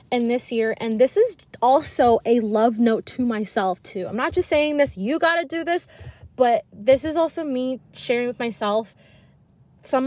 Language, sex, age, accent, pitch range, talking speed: English, female, 20-39, American, 205-250 Hz, 190 wpm